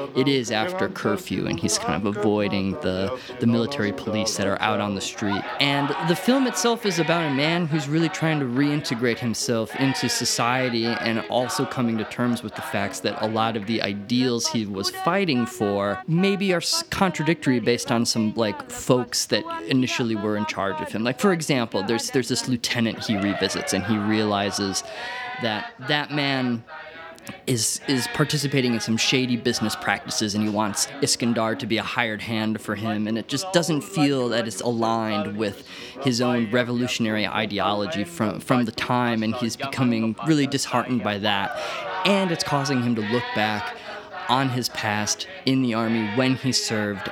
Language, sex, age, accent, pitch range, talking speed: English, male, 20-39, American, 110-135 Hz, 180 wpm